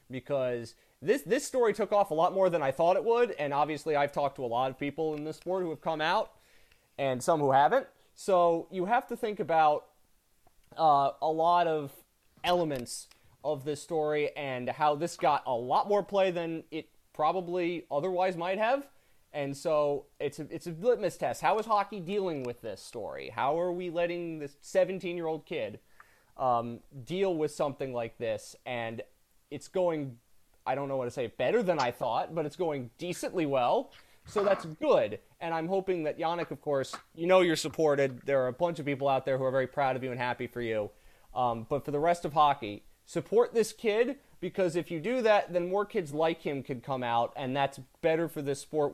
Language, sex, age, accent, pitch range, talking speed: English, male, 20-39, American, 140-180 Hz, 210 wpm